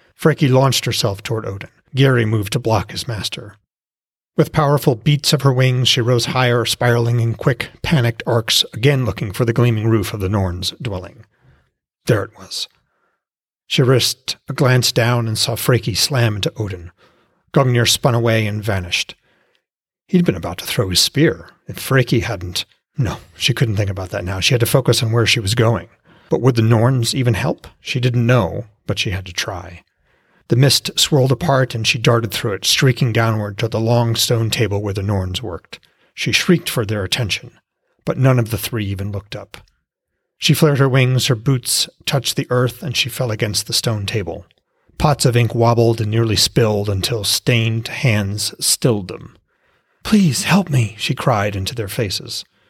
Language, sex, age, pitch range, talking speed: English, male, 40-59, 110-130 Hz, 185 wpm